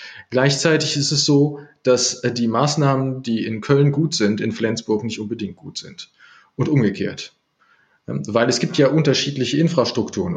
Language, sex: German, male